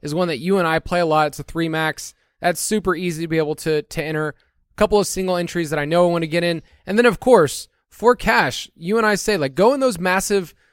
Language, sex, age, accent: English, male, 20-39, American